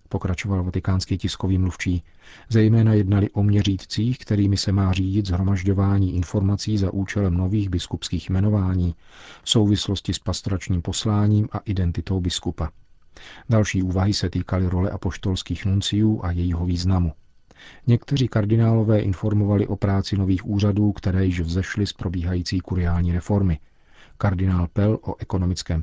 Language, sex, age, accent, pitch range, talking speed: Czech, male, 40-59, native, 90-105 Hz, 125 wpm